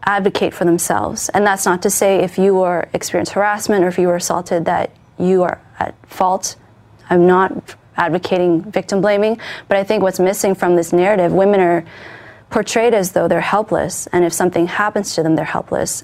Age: 20-39